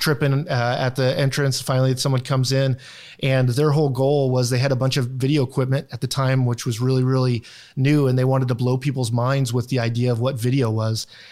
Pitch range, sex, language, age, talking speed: 125-140 Hz, male, English, 30-49, 225 wpm